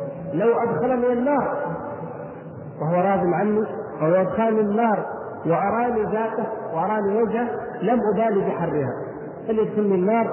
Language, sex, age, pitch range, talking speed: Arabic, male, 50-69, 165-215 Hz, 105 wpm